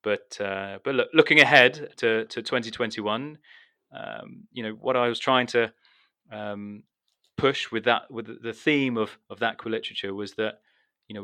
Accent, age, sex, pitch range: British, 30-49, male, 105-115 Hz